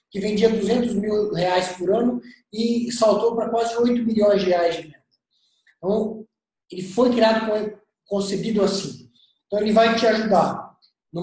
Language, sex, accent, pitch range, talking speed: Portuguese, male, Brazilian, 200-235 Hz, 155 wpm